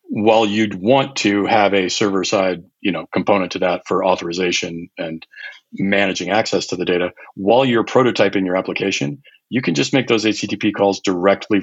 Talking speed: 160 wpm